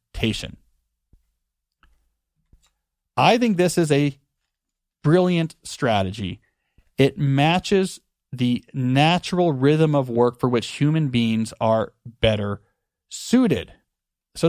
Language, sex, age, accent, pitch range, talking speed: English, male, 30-49, American, 125-160 Hz, 90 wpm